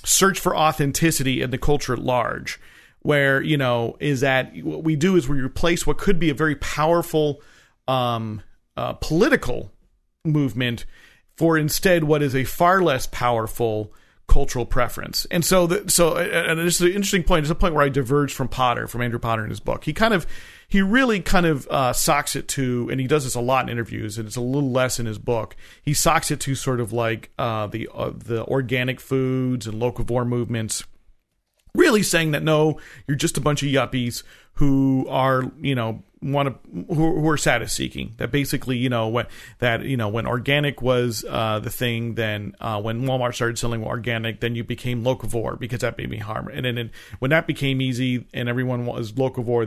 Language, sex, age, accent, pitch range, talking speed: English, male, 40-59, American, 120-155 Hz, 200 wpm